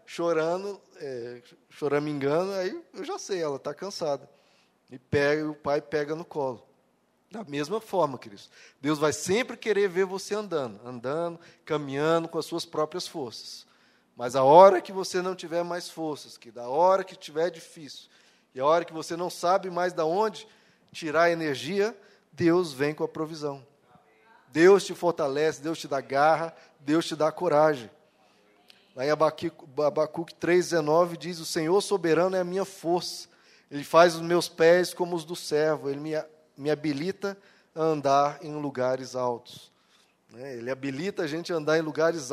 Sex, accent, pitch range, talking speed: male, Brazilian, 150-180 Hz, 170 wpm